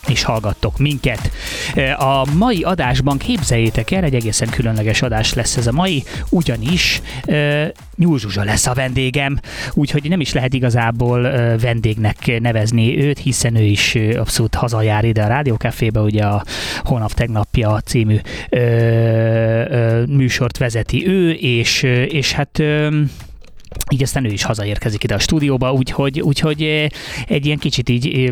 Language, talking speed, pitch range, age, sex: Hungarian, 130 wpm, 115-140 Hz, 30-49, male